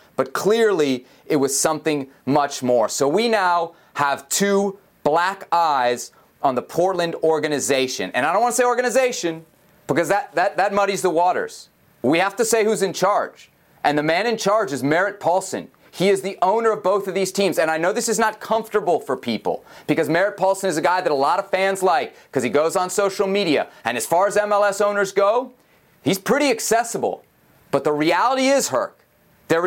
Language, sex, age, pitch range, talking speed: English, male, 30-49, 145-210 Hz, 200 wpm